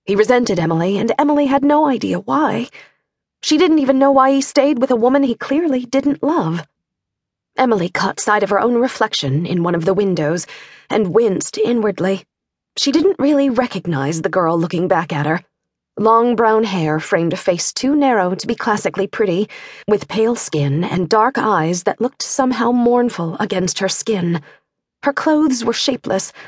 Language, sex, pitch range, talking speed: English, female, 170-250 Hz, 175 wpm